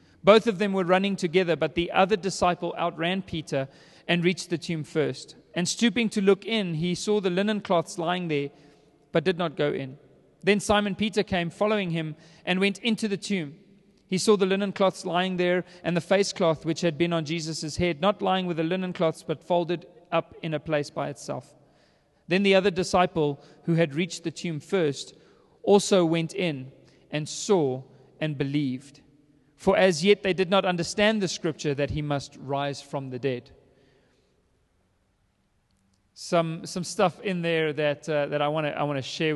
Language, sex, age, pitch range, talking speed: English, male, 30-49, 145-185 Hz, 185 wpm